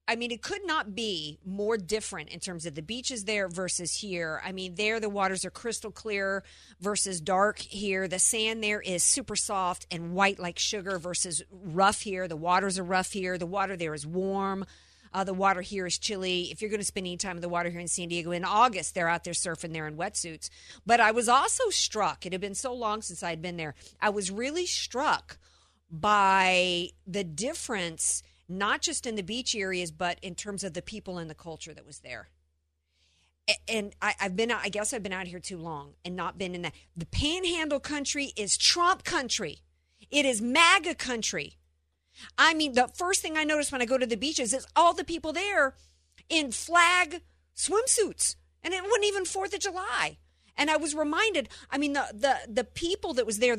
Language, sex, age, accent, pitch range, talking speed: English, female, 50-69, American, 175-255 Hz, 210 wpm